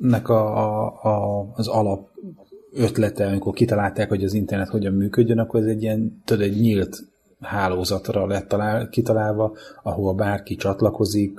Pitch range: 95-105 Hz